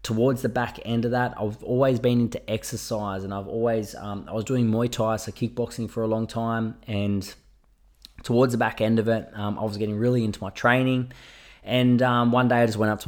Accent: Australian